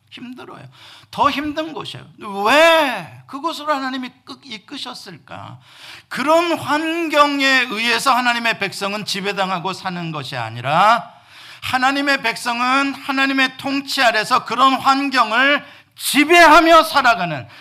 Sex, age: male, 50-69